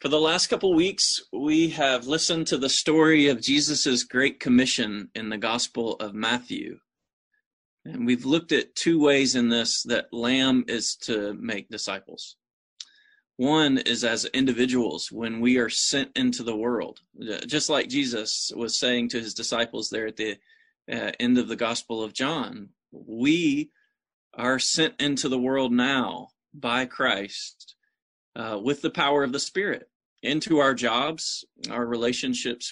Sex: male